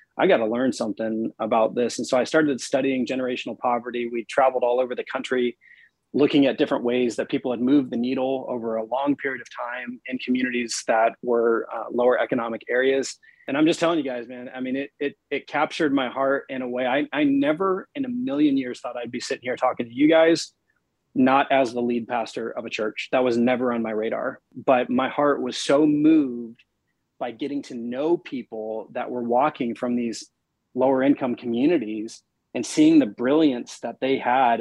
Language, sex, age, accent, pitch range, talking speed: English, male, 30-49, American, 120-140 Hz, 205 wpm